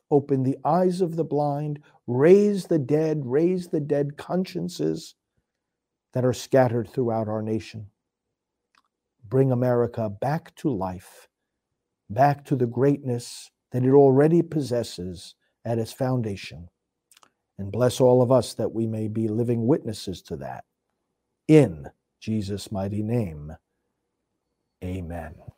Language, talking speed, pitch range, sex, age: English, 125 wpm, 115-140 Hz, male, 50-69